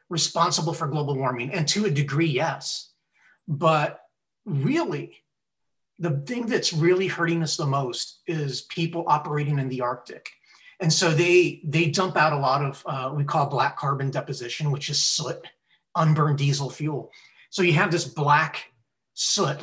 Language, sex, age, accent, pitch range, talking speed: English, male, 30-49, American, 140-170 Hz, 160 wpm